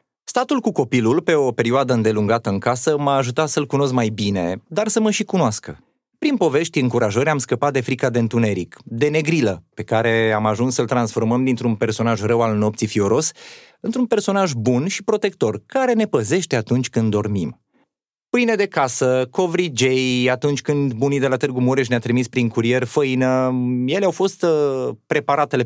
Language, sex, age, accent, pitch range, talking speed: Romanian, male, 30-49, native, 120-170 Hz, 175 wpm